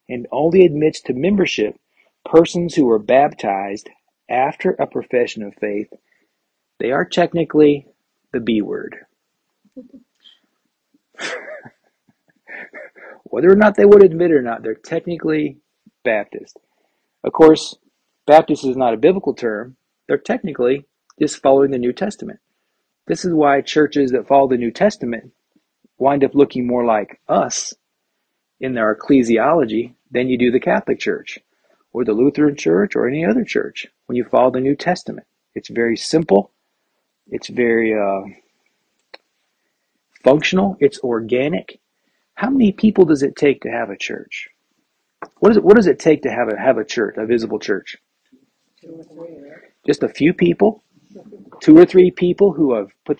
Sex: male